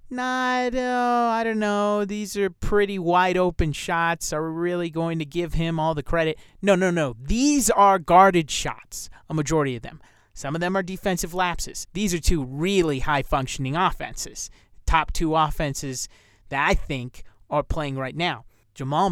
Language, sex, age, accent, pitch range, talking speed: English, male, 30-49, American, 140-195 Hz, 170 wpm